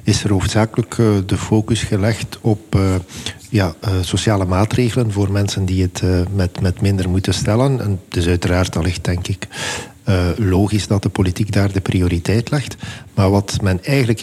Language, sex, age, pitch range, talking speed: Dutch, male, 50-69, 95-115 Hz, 155 wpm